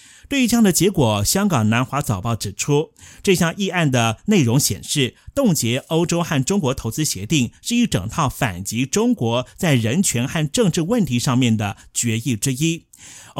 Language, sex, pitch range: Chinese, male, 115-160 Hz